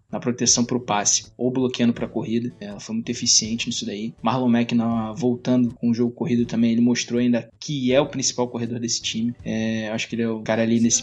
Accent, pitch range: Brazilian, 115-120 Hz